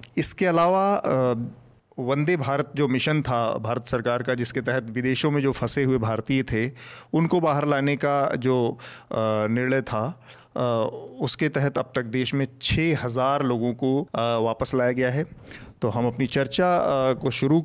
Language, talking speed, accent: Hindi, 155 wpm, native